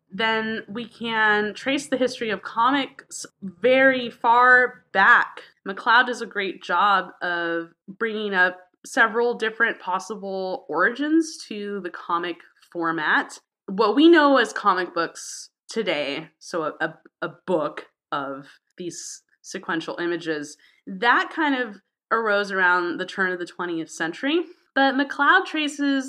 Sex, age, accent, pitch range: female, 20-39, American, 180-245 Hz